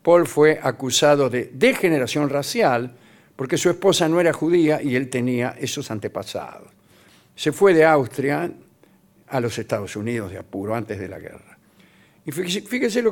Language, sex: Spanish, male